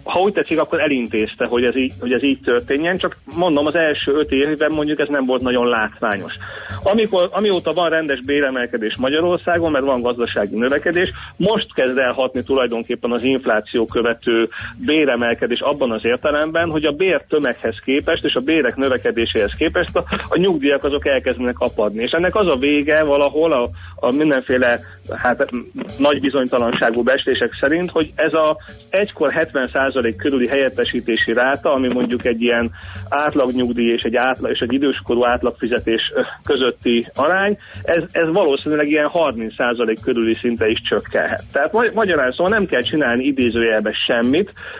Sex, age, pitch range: male, 30-49, 120-150 Hz